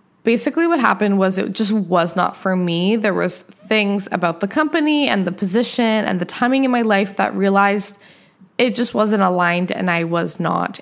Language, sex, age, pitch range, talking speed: English, female, 20-39, 180-220 Hz, 195 wpm